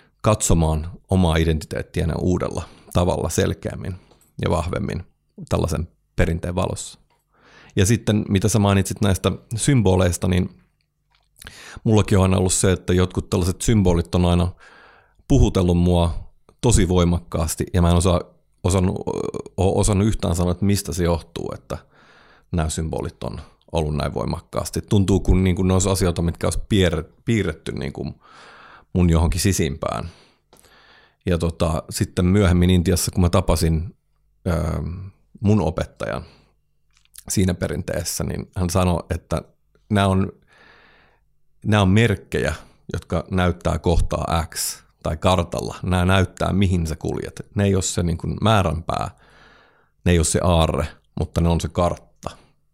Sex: male